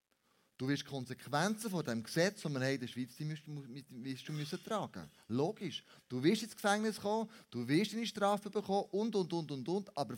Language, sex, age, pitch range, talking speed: German, male, 30-49, 140-195 Hz, 205 wpm